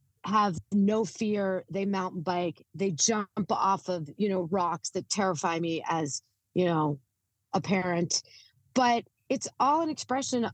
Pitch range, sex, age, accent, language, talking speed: 170-220 Hz, female, 40-59, American, English, 150 wpm